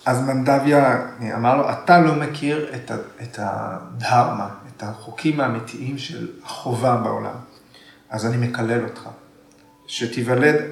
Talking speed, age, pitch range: 110 wpm, 40-59, 110-135 Hz